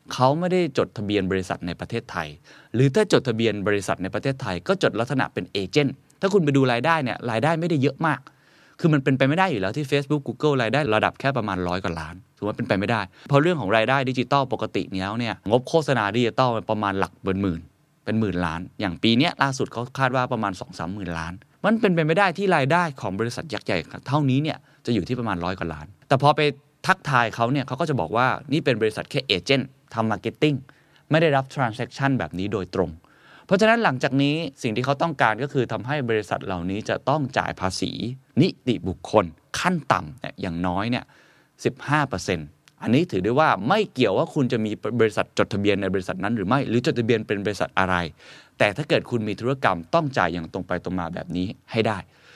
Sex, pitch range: male, 95-140 Hz